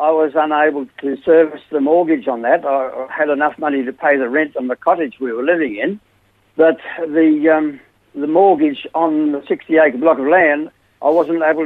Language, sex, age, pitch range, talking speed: English, male, 60-79, 150-185 Hz, 195 wpm